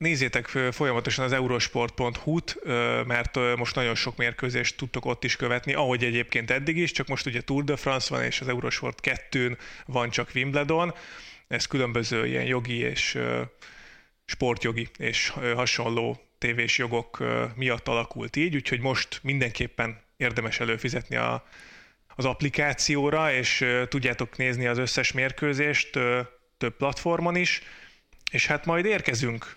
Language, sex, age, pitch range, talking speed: Hungarian, male, 30-49, 120-145 Hz, 130 wpm